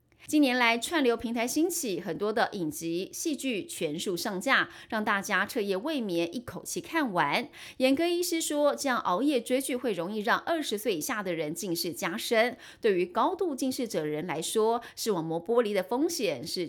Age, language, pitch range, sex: 30-49, Chinese, 170-270 Hz, female